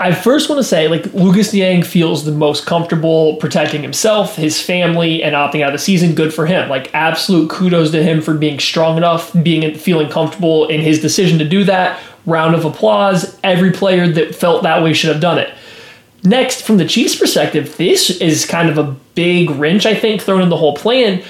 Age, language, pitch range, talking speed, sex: 20-39, English, 155-190 Hz, 210 wpm, male